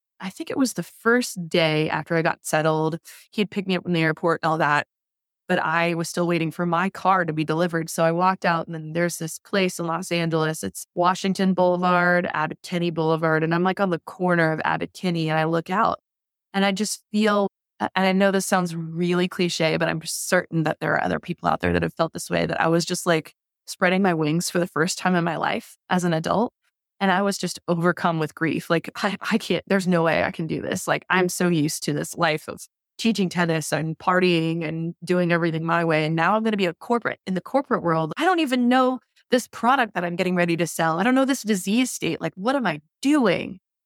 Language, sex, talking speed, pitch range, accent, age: English, female, 245 wpm, 165-195 Hz, American, 20-39